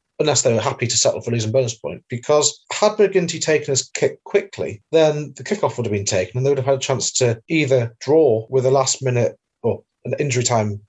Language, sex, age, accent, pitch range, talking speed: English, male, 30-49, British, 120-150 Hz, 230 wpm